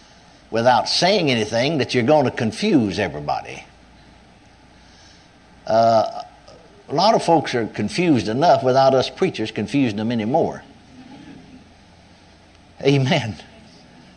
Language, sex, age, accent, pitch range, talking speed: English, male, 60-79, American, 110-145 Hz, 95 wpm